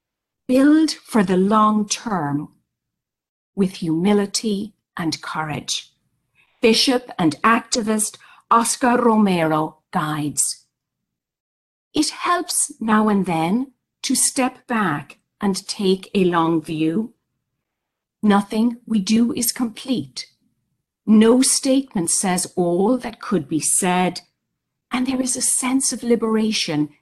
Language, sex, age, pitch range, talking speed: English, female, 50-69, 170-245 Hz, 105 wpm